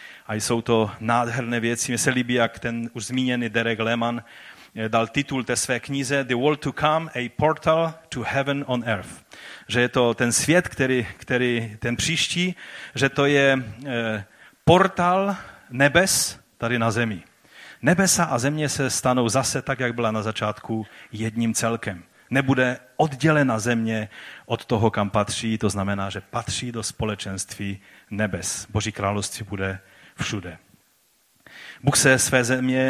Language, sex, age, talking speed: Czech, male, 30-49, 150 wpm